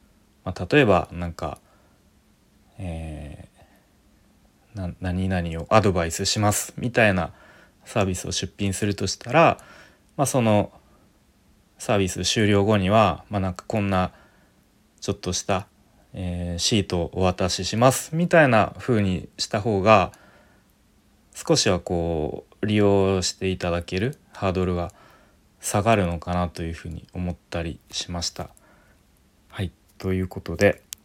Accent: native